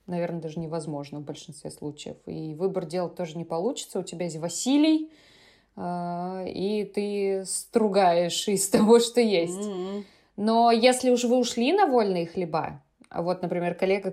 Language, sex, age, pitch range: Russian, female, 20-39, 180-230 Hz